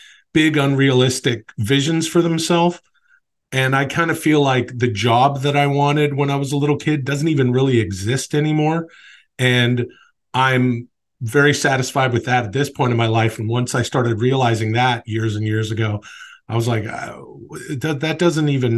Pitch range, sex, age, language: 125-160 Hz, male, 40-59, English